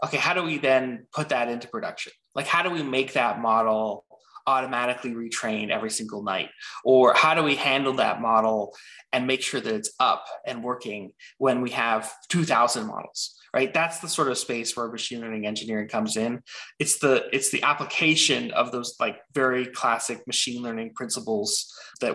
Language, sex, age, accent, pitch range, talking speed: English, male, 20-39, American, 110-140 Hz, 180 wpm